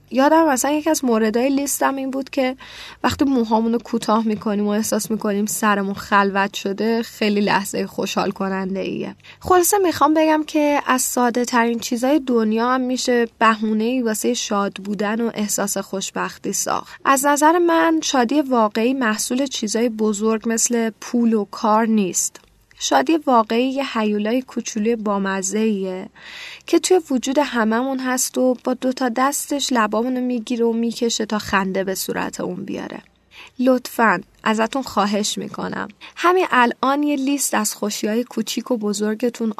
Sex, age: female, 10-29